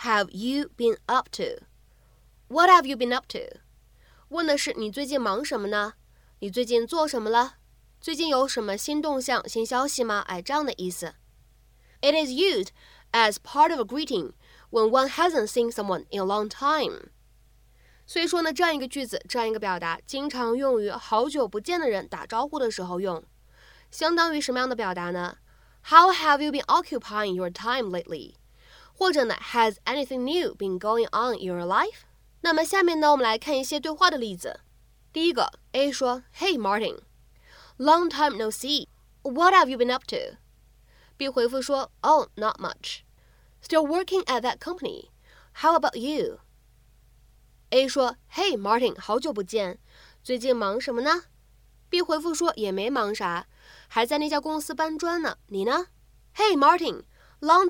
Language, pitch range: Chinese, 220-325 Hz